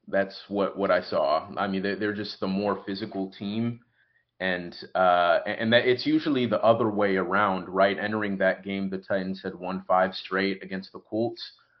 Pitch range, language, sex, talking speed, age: 100-115 Hz, English, male, 185 wpm, 30-49